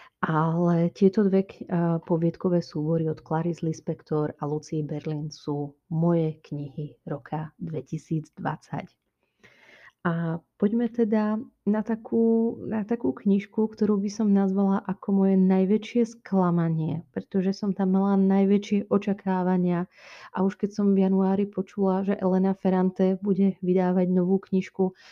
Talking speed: 130 wpm